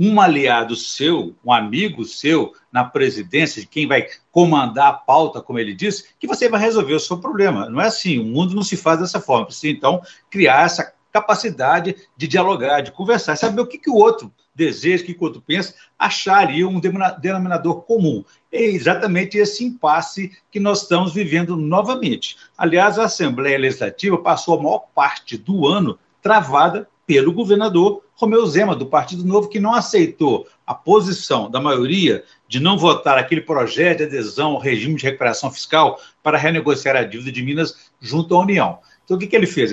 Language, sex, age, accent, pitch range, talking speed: Portuguese, male, 60-79, Brazilian, 150-215 Hz, 185 wpm